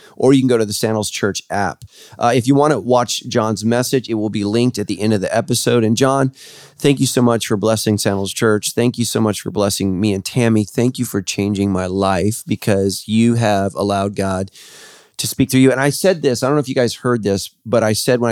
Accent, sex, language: American, male, English